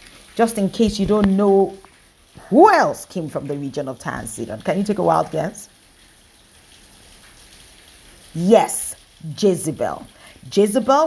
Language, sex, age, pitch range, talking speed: English, female, 40-59, 155-205 Hz, 135 wpm